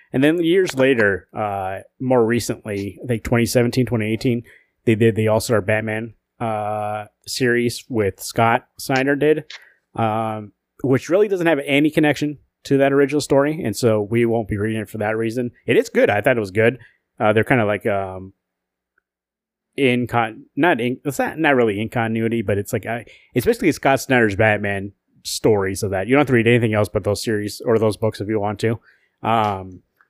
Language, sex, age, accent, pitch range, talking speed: English, male, 30-49, American, 110-130 Hz, 190 wpm